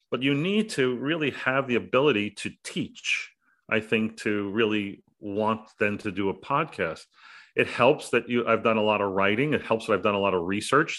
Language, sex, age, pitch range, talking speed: English, male, 40-59, 105-130 Hz, 215 wpm